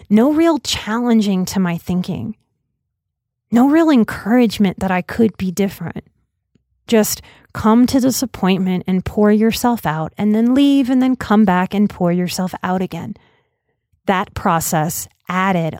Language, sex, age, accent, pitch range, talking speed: English, female, 30-49, American, 175-230 Hz, 140 wpm